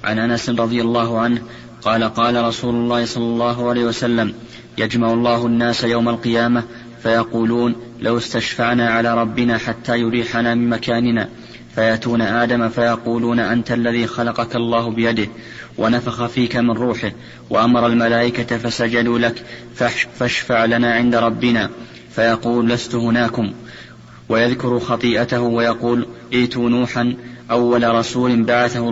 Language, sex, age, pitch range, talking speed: Arabic, male, 30-49, 115-120 Hz, 120 wpm